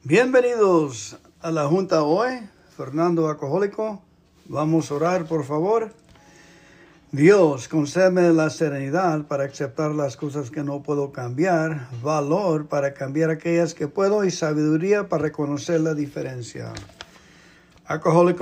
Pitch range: 150-180 Hz